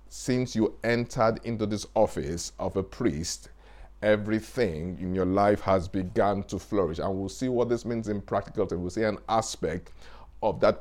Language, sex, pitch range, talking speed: English, male, 85-105 Hz, 180 wpm